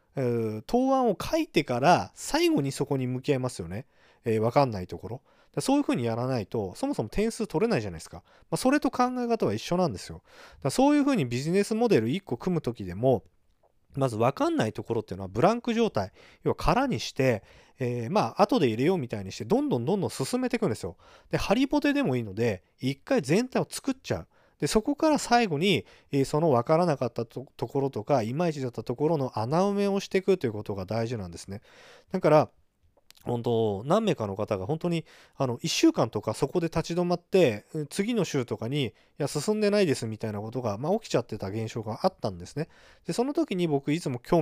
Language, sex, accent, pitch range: Japanese, male, native, 115-190 Hz